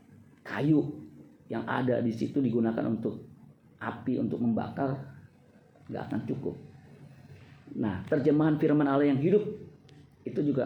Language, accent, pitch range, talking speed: Indonesian, native, 120-145 Hz, 120 wpm